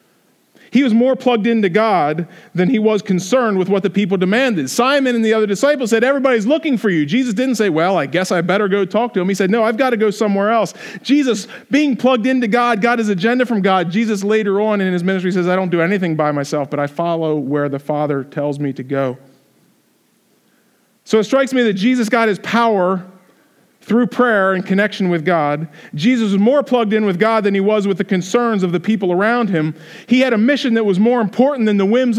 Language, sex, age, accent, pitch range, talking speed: English, male, 40-59, American, 180-235 Hz, 230 wpm